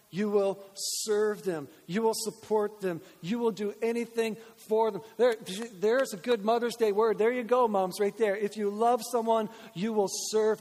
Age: 50-69